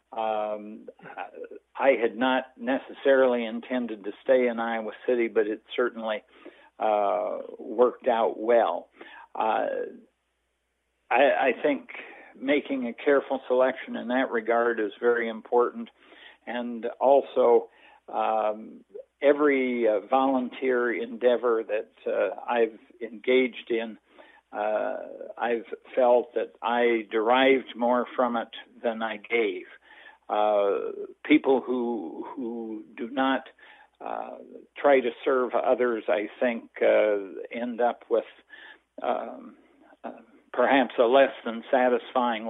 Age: 60-79